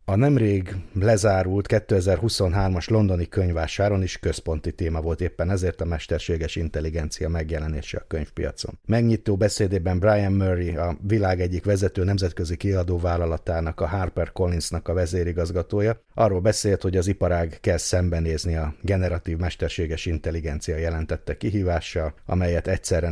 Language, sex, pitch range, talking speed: Hungarian, male, 85-100 Hz, 125 wpm